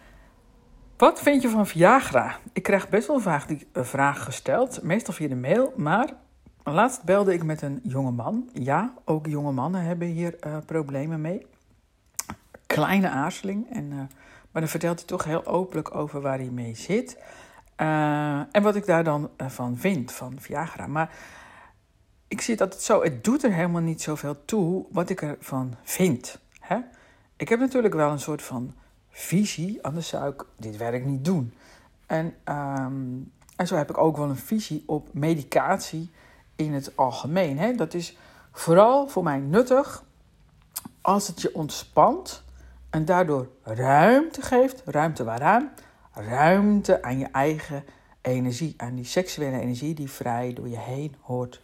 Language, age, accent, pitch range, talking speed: Dutch, 60-79, Dutch, 135-195 Hz, 160 wpm